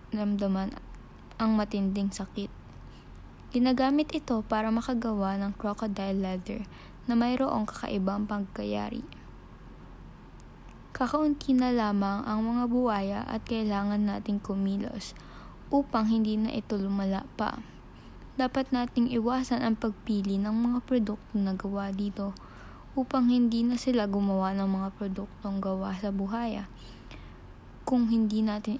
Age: 20-39